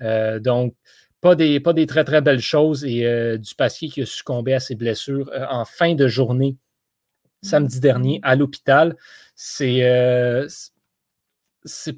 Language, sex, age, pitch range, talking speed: French, male, 30-49, 130-180 Hz, 160 wpm